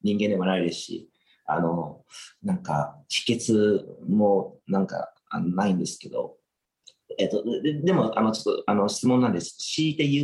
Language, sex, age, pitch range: Japanese, male, 40-59, 90-135 Hz